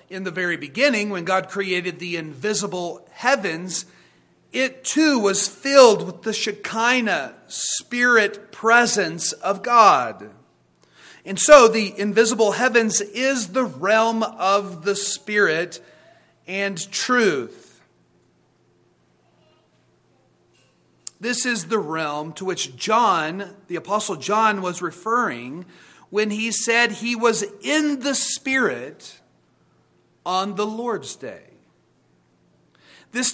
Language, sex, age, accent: English, male, 40-59, American